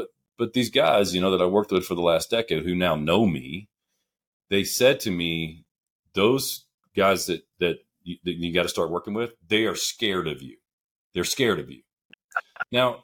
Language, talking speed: English, 200 wpm